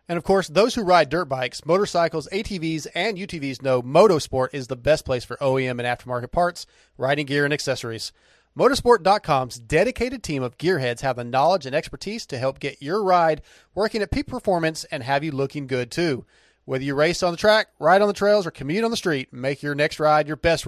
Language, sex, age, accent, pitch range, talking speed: English, male, 30-49, American, 130-185 Hz, 210 wpm